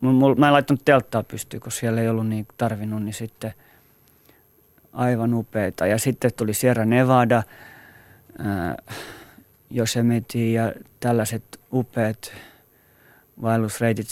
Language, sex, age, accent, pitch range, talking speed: Finnish, male, 30-49, native, 105-130 Hz, 100 wpm